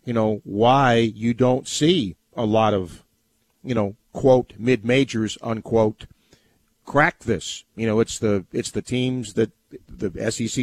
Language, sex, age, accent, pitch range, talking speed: English, male, 50-69, American, 115-150 Hz, 145 wpm